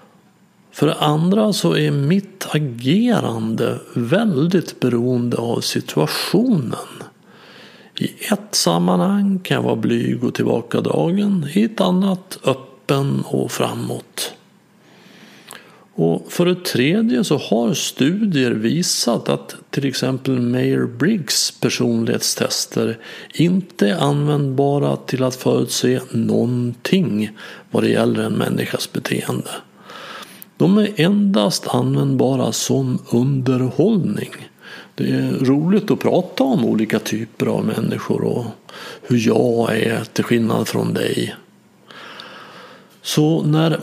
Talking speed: 110 wpm